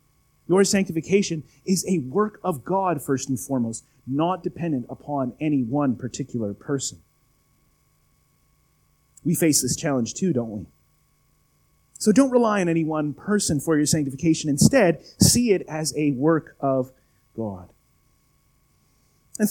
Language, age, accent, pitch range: English, 30-49, American, 140-215 Hz